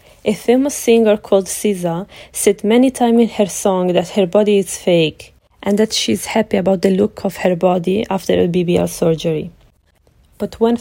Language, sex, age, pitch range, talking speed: English, female, 20-39, 170-215 Hz, 180 wpm